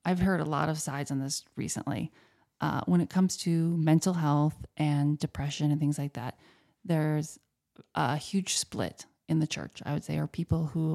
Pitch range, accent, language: 145-170 Hz, American, English